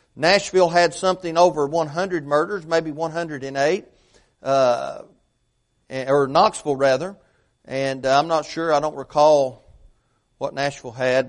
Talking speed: 115 wpm